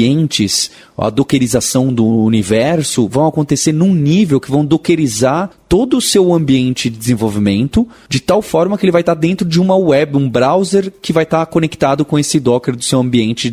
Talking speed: 180 wpm